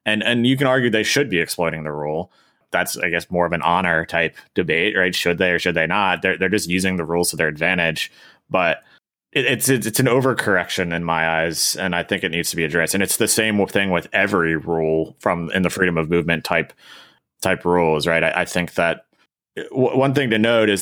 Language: English